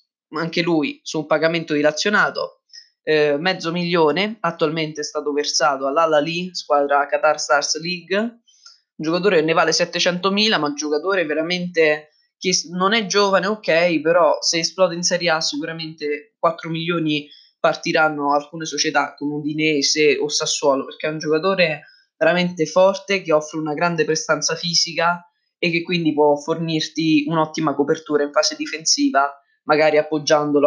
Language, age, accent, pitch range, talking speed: Italian, 20-39, native, 150-185 Hz, 145 wpm